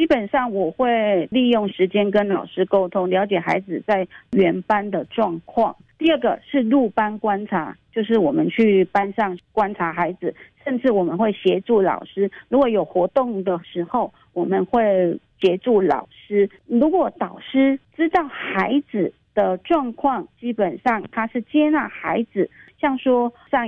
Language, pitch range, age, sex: Chinese, 190-250 Hz, 40-59, female